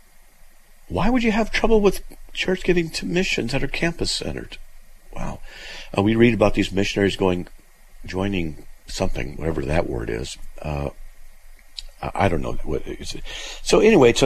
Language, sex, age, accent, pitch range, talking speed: English, male, 50-69, American, 80-110 Hz, 155 wpm